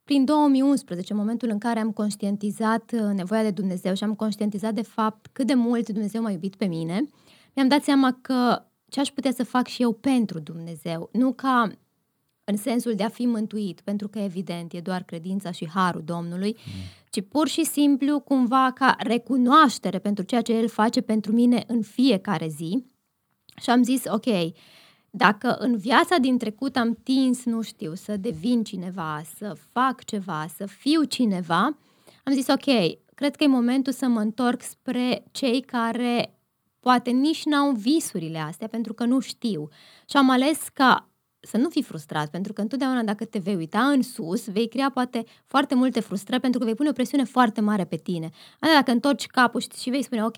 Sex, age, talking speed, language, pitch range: female, 20-39, 185 wpm, Romanian, 200-255 Hz